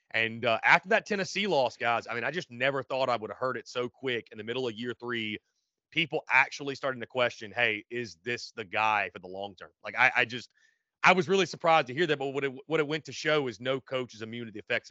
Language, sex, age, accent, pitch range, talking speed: English, male, 30-49, American, 115-140 Hz, 270 wpm